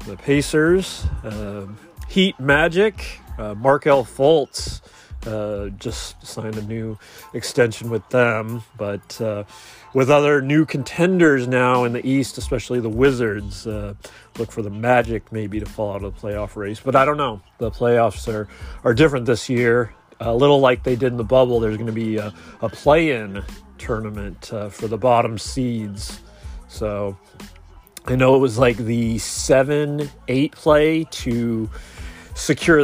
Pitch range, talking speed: 110-135 Hz, 155 wpm